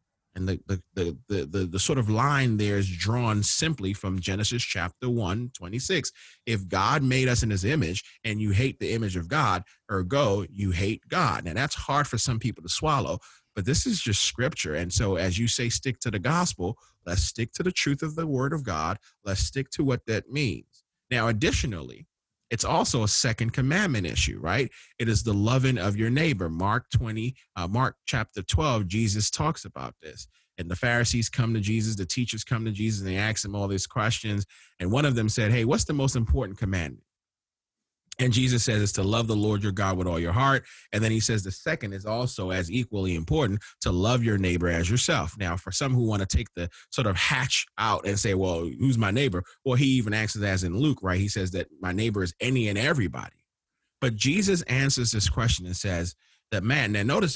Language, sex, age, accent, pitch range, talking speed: English, male, 30-49, American, 95-125 Hz, 215 wpm